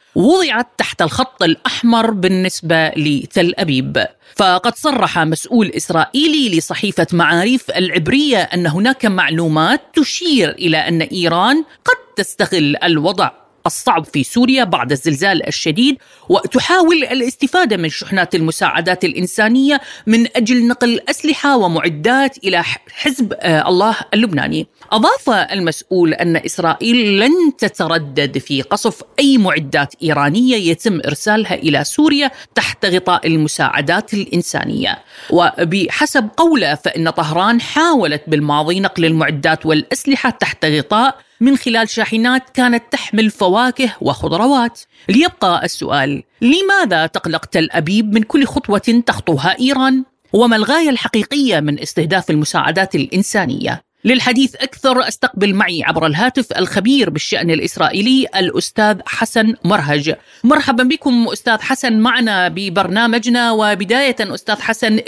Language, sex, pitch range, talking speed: Arabic, female, 170-255 Hz, 110 wpm